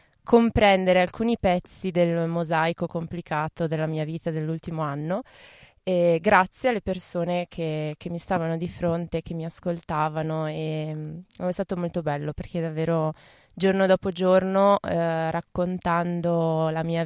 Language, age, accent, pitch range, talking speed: Italian, 20-39, native, 160-180 Hz, 130 wpm